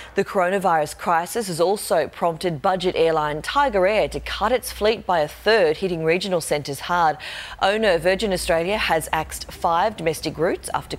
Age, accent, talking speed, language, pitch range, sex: 30-49, Australian, 165 wpm, English, 155-195 Hz, female